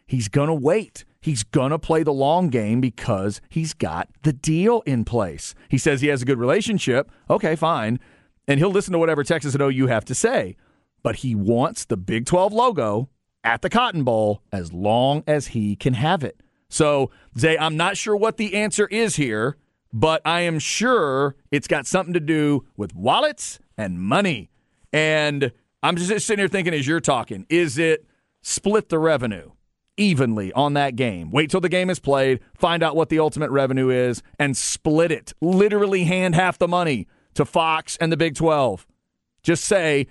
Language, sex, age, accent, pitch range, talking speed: English, male, 40-59, American, 125-170 Hz, 190 wpm